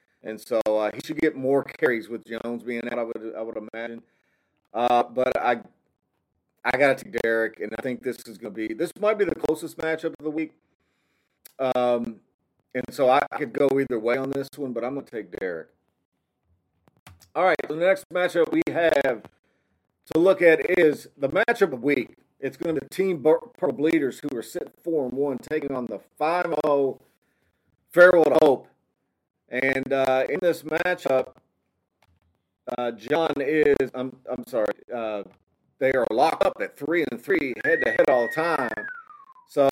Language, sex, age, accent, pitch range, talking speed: English, male, 40-59, American, 120-160 Hz, 190 wpm